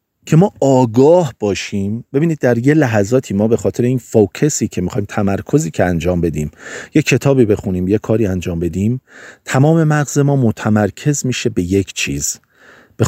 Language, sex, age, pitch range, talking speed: Persian, male, 40-59, 100-130 Hz, 160 wpm